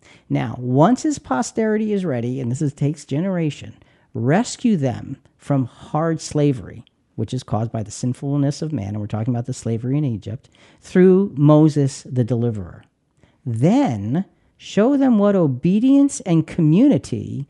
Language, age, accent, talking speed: English, 50-69, American, 145 wpm